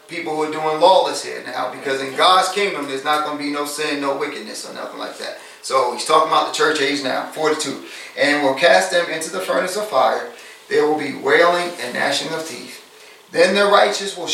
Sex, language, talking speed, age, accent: male, English, 225 wpm, 30-49, American